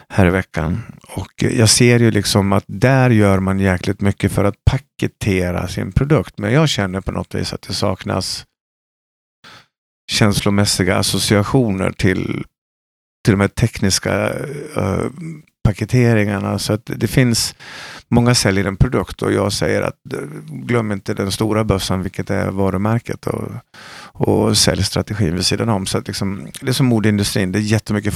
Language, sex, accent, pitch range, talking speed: Swedish, male, native, 95-115 Hz, 150 wpm